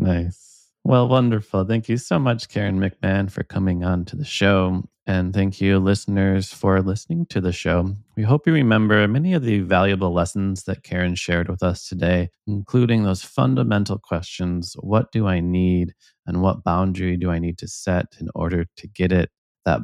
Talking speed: 185 wpm